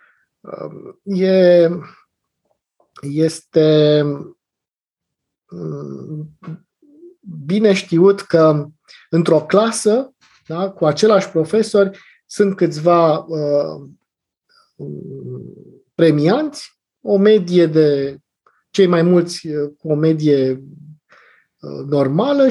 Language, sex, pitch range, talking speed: Romanian, male, 150-200 Hz, 60 wpm